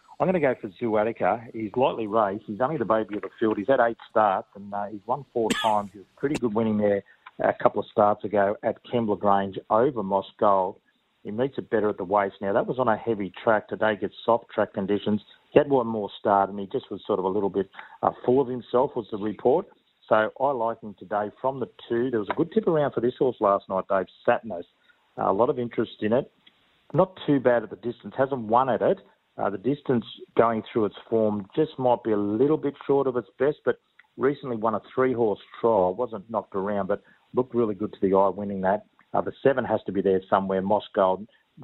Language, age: English, 40-59